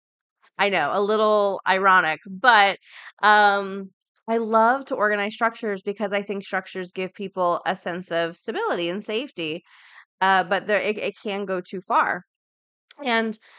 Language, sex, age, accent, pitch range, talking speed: English, female, 20-39, American, 180-220 Hz, 150 wpm